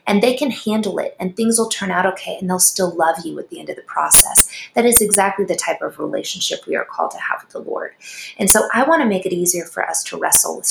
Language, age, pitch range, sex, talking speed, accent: English, 20-39, 165-205 Hz, female, 280 wpm, American